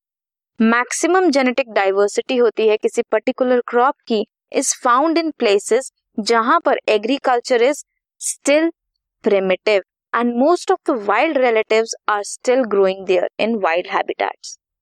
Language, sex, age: Hindi, female, 20-39